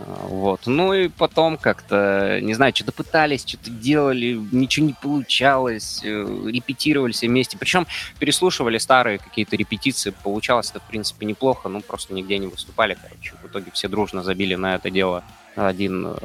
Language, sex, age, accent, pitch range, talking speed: Russian, male, 20-39, native, 100-135 Hz, 150 wpm